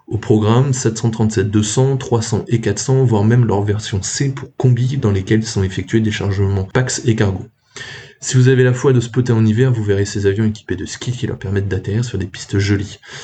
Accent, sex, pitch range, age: French, male, 100-125 Hz, 20-39